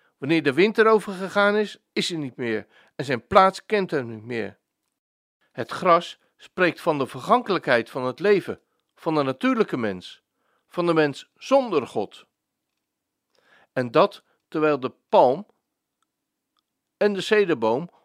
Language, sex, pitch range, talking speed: Dutch, male, 150-210 Hz, 145 wpm